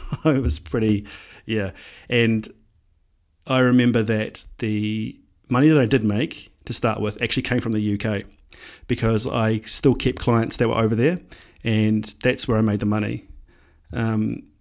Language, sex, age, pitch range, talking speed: English, male, 30-49, 100-120 Hz, 160 wpm